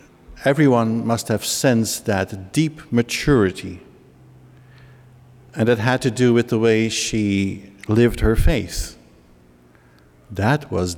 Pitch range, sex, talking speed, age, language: 95-130 Hz, male, 115 wpm, 60-79, English